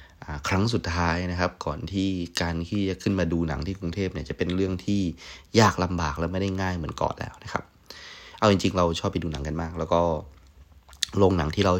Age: 20-39